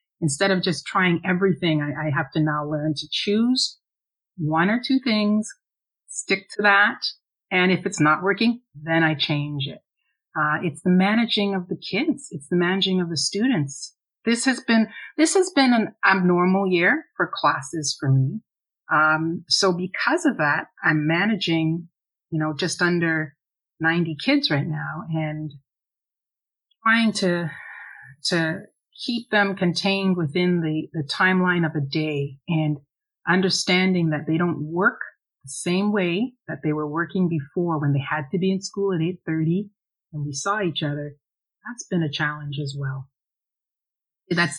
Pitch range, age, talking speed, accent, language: 150-195 Hz, 30-49, 160 wpm, American, English